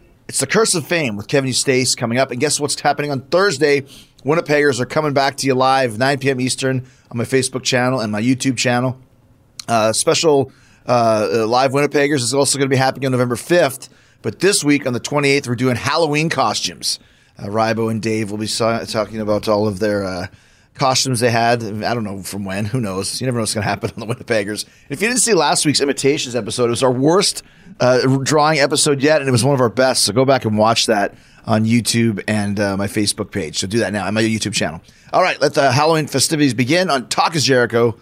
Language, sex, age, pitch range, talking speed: English, male, 30-49, 115-145 Hz, 230 wpm